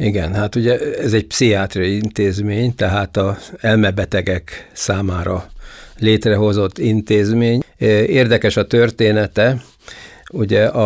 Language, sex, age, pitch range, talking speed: Hungarian, male, 60-79, 95-110 Hz, 95 wpm